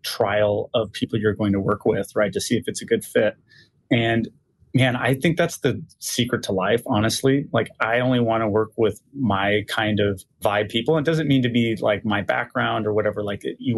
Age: 30-49